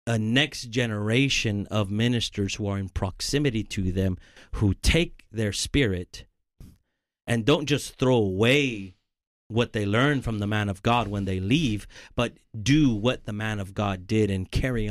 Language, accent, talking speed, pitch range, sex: English, American, 165 wpm, 95-115 Hz, male